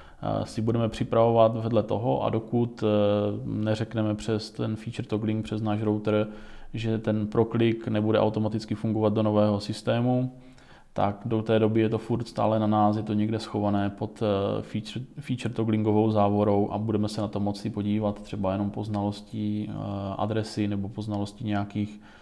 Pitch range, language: 105-110 Hz, Czech